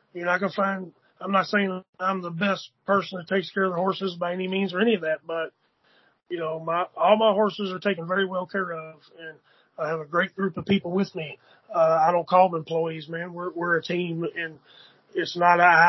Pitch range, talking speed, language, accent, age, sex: 170-195 Hz, 240 wpm, English, American, 30-49, male